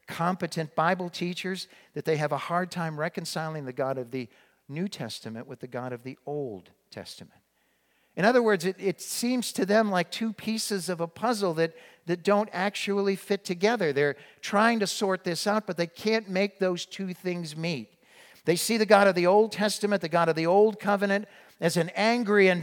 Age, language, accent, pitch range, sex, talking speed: 50-69, English, American, 145-195 Hz, male, 200 wpm